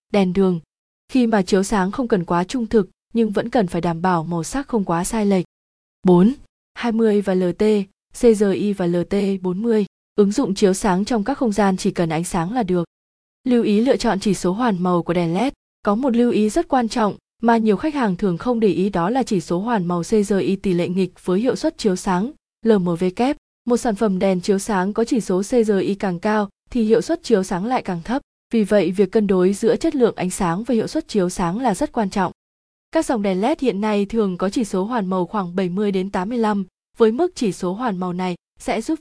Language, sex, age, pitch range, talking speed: Vietnamese, female, 20-39, 185-235 Hz, 230 wpm